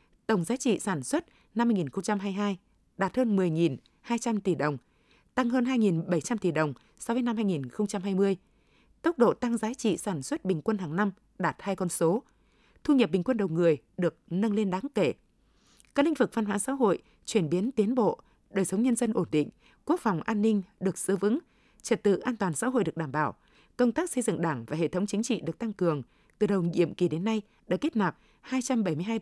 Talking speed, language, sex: 210 wpm, Vietnamese, female